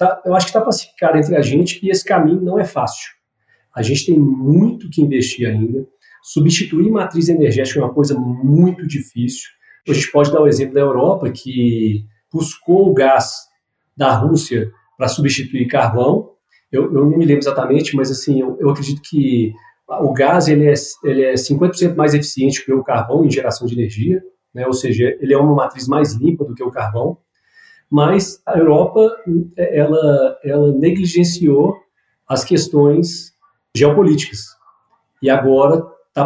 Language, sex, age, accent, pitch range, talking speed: Portuguese, male, 40-59, Brazilian, 130-165 Hz, 165 wpm